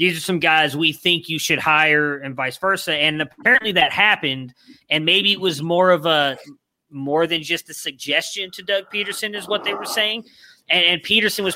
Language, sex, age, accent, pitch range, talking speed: English, male, 30-49, American, 140-180 Hz, 210 wpm